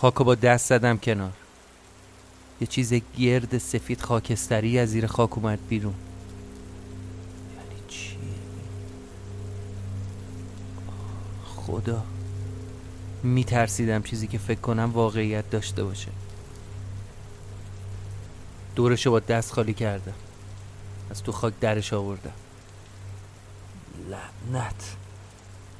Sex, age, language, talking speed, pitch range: male, 30-49, Persian, 90 wpm, 100-120 Hz